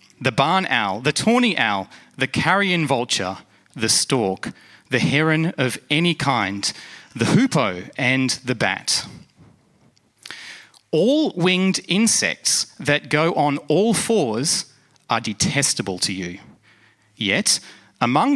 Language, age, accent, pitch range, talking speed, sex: English, 30-49, Australian, 115-150 Hz, 115 wpm, male